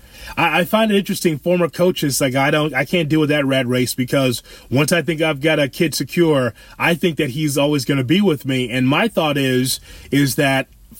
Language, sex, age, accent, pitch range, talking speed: English, male, 30-49, American, 130-175 Hz, 225 wpm